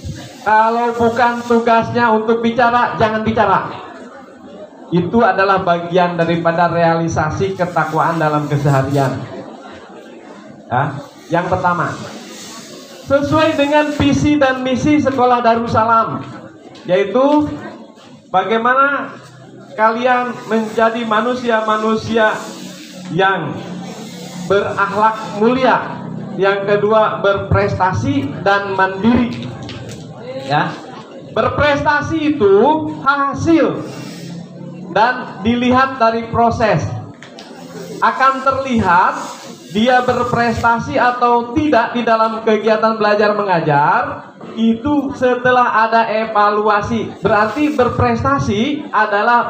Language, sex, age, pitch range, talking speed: Indonesian, male, 30-49, 195-255 Hz, 80 wpm